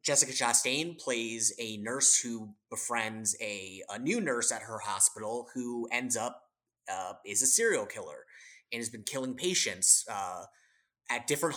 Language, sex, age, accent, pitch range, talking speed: English, male, 30-49, American, 110-145 Hz, 155 wpm